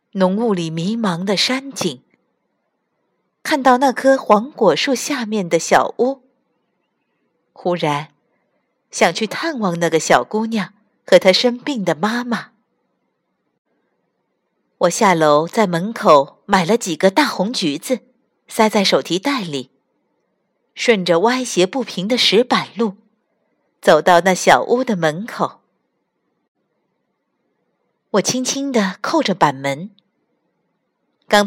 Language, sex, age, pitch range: Chinese, female, 50-69, 180-240 Hz